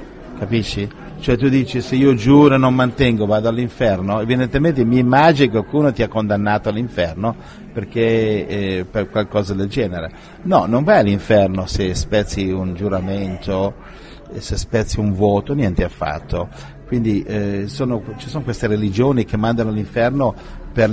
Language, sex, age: Italian, male, 50-69